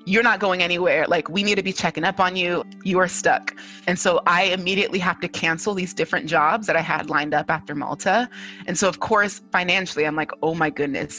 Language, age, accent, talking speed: English, 30-49, American, 230 wpm